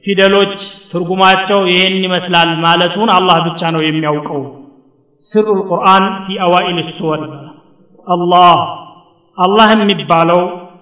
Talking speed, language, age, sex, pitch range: 95 wpm, Amharic, 50-69, male, 165-195 Hz